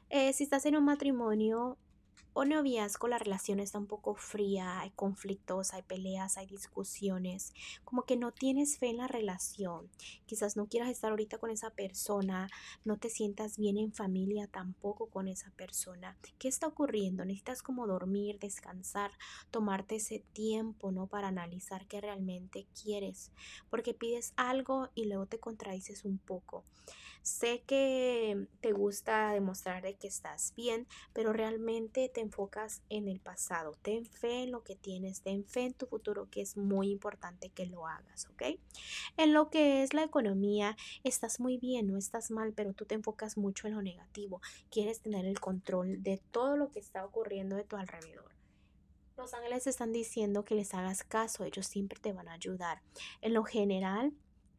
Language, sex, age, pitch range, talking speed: Spanish, female, 20-39, 195-235 Hz, 170 wpm